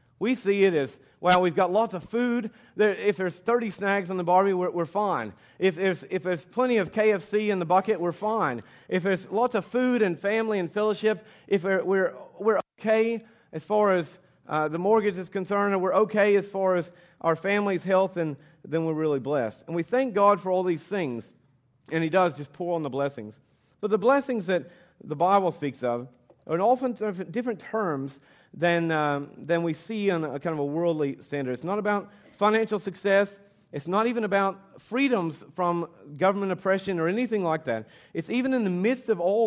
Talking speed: 195 wpm